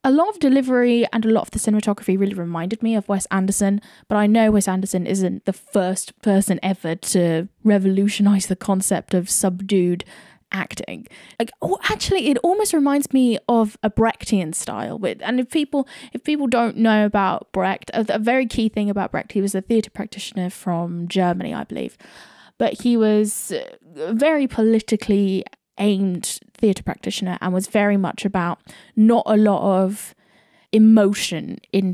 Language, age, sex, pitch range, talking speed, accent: English, 10-29, female, 195-235 Hz, 165 wpm, British